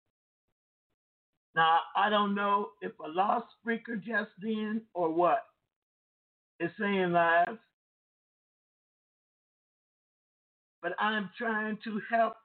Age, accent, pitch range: 50-69, American, 215-260 Hz